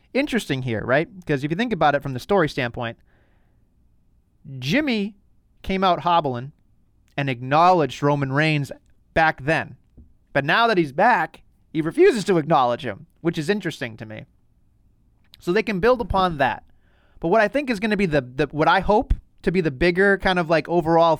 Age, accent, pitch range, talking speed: 30-49, American, 140-195 Hz, 185 wpm